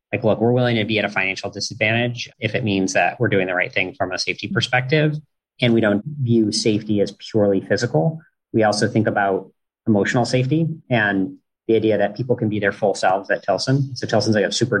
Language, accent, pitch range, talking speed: English, American, 100-120 Hz, 220 wpm